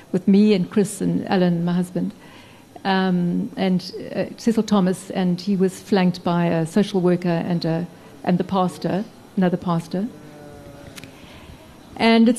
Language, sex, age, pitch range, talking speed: English, female, 60-79, 185-220 Hz, 135 wpm